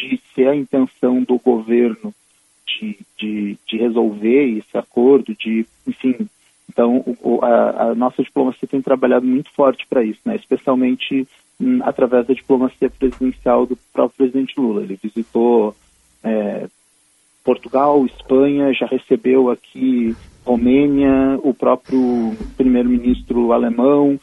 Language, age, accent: Portuguese, 40-59, Brazilian